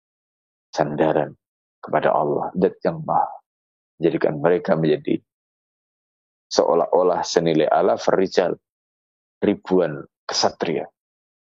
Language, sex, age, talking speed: Indonesian, male, 30-49, 80 wpm